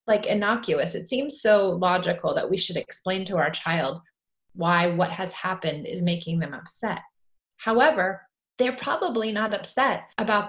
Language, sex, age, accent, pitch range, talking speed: English, female, 30-49, American, 170-220 Hz, 155 wpm